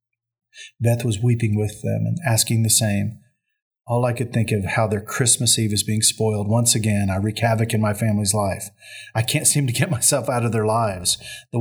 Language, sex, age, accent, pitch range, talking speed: English, male, 40-59, American, 105-125 Hz, 210 wpm